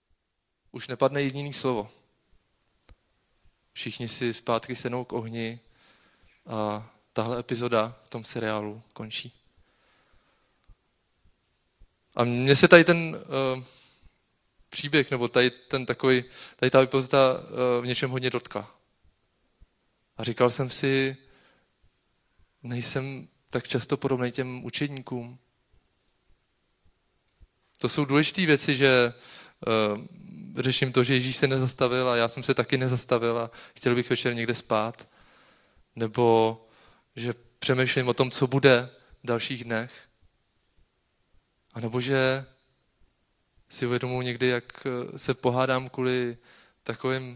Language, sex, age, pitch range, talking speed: Czech, male, 20-39, 115-130 Hz, 110 wpm